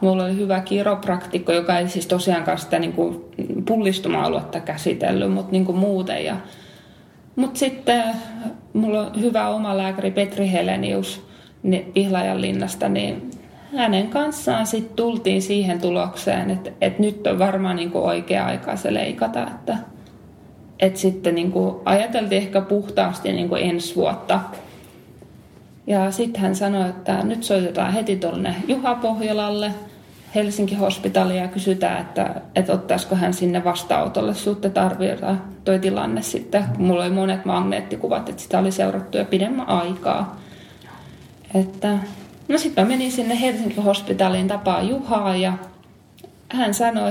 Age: 20-39